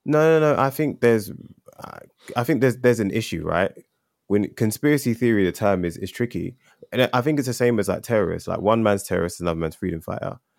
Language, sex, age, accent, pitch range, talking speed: English, male, 20-39, British, 95-120 Hz, 215 wpm